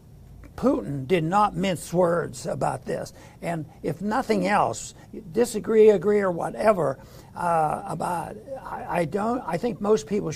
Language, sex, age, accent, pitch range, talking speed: English, male, 60-79, American, 175-225 Hz, 140 wpm